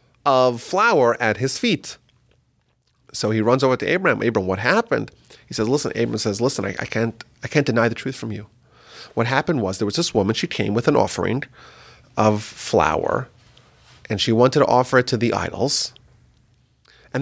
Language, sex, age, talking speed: English, male, 30-49, 190 wpm